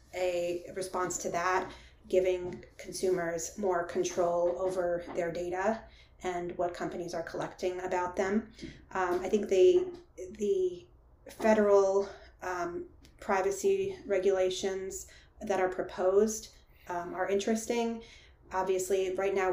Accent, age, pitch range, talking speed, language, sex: American, 30-49, 175-200 Hz, 110 wpm, English, female